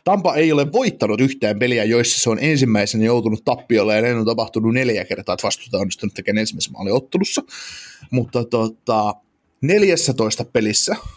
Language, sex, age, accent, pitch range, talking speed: Finnish, male, 20-39, native, 110-140 Hz, 155 wpm